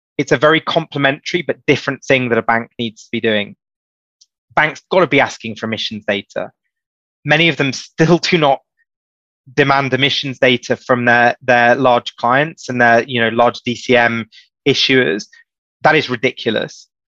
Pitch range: 120-140 Hz